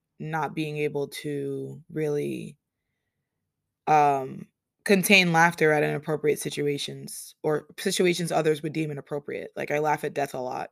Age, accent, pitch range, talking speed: 20-39, American, 140-170 Hz, 135 wpm